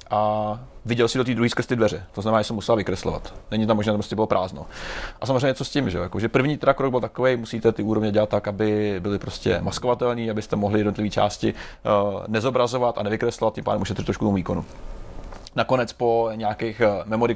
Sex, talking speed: male, 200 wpm